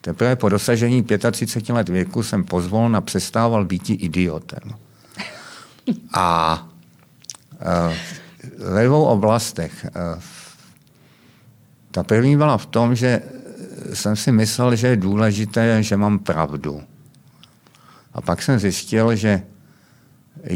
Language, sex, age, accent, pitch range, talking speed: Czech, male, 50-69, native, 90-115 Hz, 110 wpm